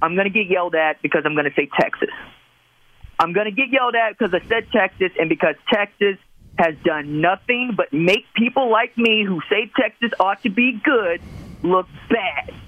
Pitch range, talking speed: 215-295 Hz, 200 wpm